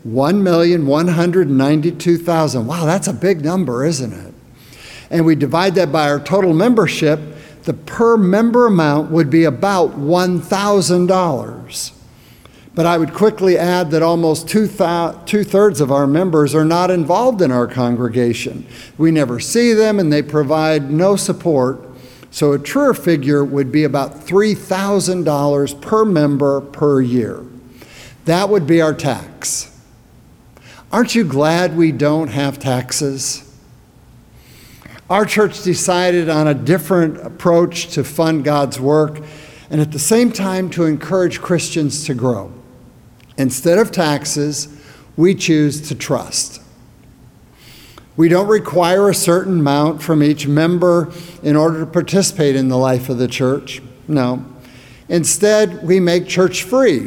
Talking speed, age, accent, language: 135 wpm, 60-79, American, English